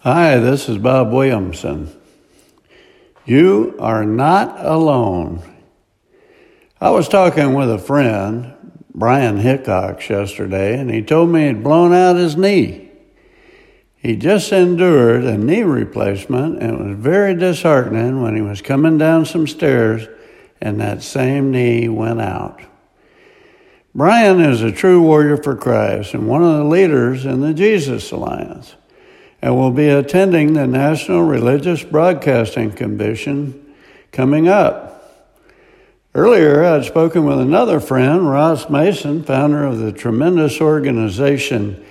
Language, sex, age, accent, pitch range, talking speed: English, male, 60-79, American, 125-175 Hz, 130 wpm